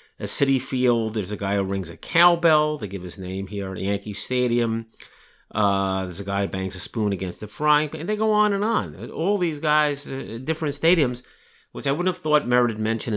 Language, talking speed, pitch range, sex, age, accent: English, 230 wpm, 100-130 Hz, male, 50-69, American